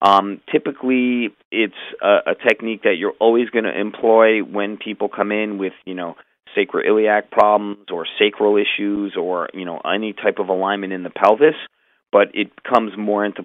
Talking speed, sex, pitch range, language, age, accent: 175 wpm, male, 95-110 Hz, English, 40-59, American